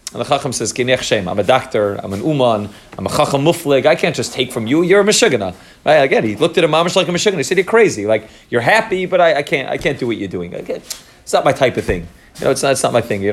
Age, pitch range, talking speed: 30-49, 130-170 Hz, 295 wpm